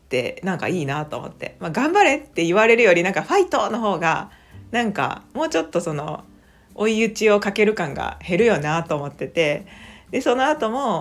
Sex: female